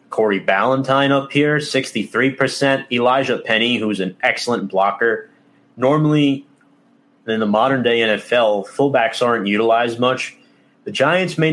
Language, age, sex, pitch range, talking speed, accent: English, 30-49, male, 105-125 Hz, 120 wpm, American